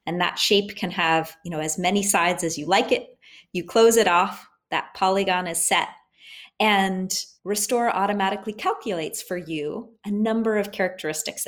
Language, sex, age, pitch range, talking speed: English, female, 30-49, 175-215 Hz, 165 wpm